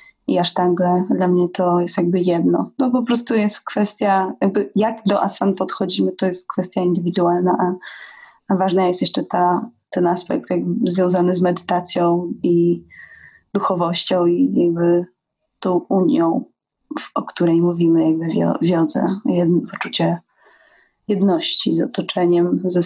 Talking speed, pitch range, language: 135 wpm, 180-210 Hz, Polish